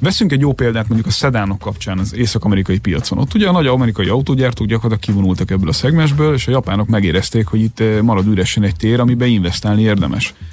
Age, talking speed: 30-49, 200 wpm